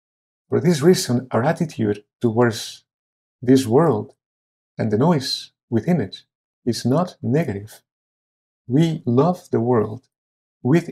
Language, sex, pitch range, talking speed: English, male, 105-130 Hz, 115 wpm